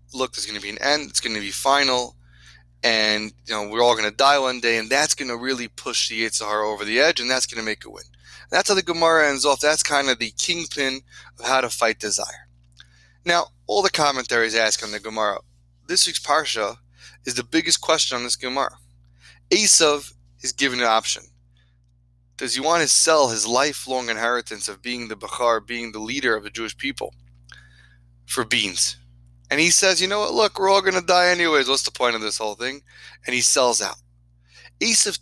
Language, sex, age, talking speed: English, male, 20-39, 215 wpm